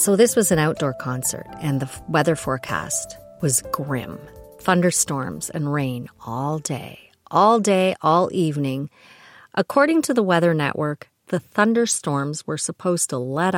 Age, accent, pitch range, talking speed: 40-59, American, 140-190 Hz, 140 wpm